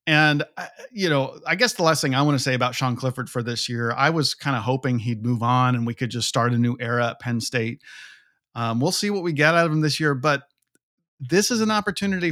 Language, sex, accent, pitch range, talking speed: English, male, American, 125-165 Hz, 260 wpm